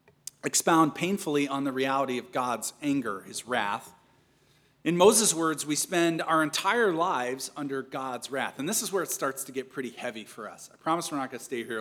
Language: English